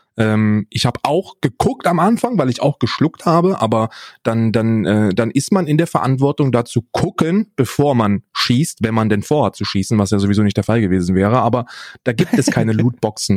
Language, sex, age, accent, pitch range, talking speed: German, male, 30-49, German, 115-160 Hz, 200 wpm